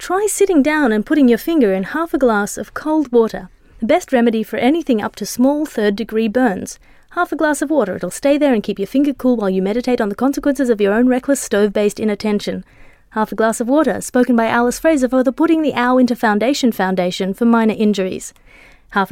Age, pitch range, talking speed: 30-49, 210-285 Hz, 220 wpm